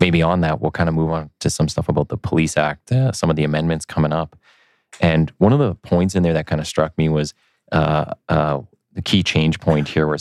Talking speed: 255 wpm